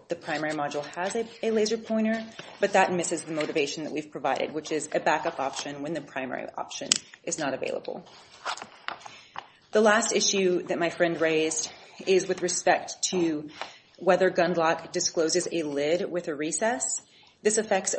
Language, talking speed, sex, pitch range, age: English, 165 wpm, female, 165-190 Hz, 30-49